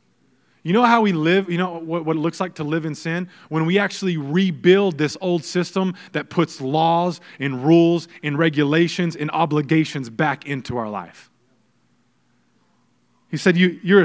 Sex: male